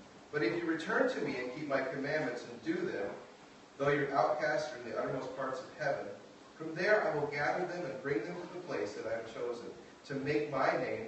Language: English